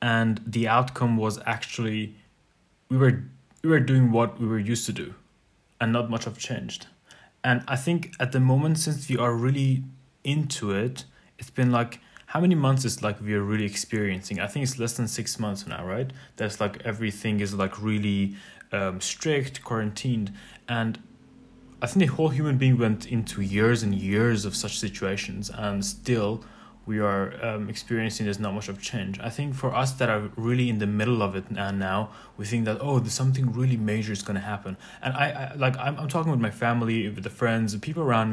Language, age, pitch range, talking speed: English, 20-39, 105-130 Hz, 205 wpm